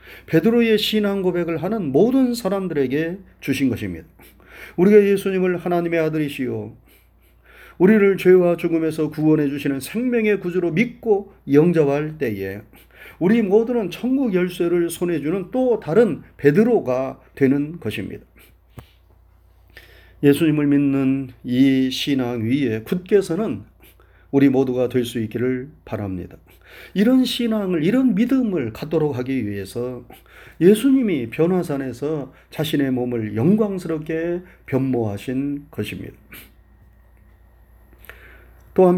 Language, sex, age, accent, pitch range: Korean, male, 40-59, native, 115-180 Hz